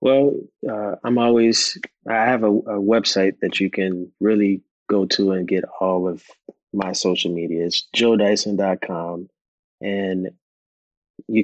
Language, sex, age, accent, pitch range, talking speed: English, male, 20-39, American, 95-105 Hz, 135 wpm